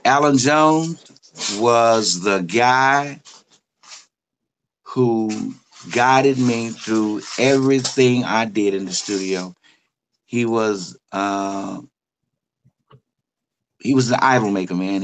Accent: American